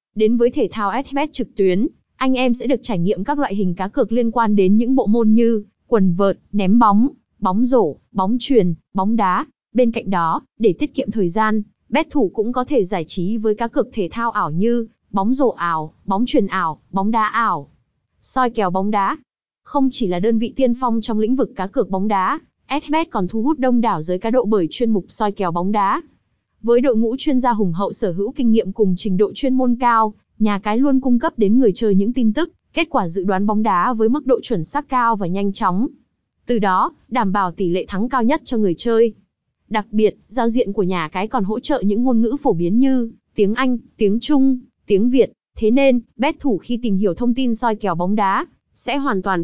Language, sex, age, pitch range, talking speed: Vietnamese, female, 20-39, 195-250 Hz, 235 wpm